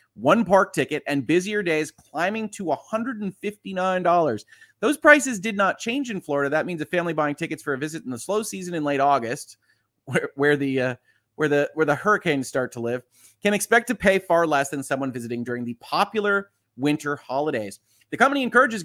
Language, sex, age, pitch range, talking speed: English, male, 30-49, 135-210 Hz, 195 wpm